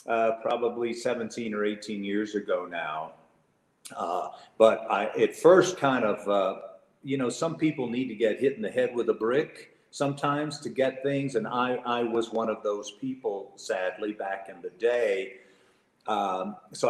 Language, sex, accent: English, male, American